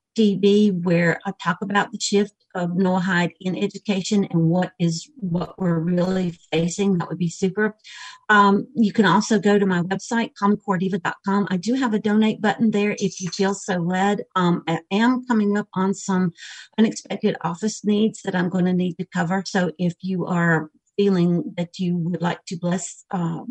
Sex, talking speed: female, 185 wpm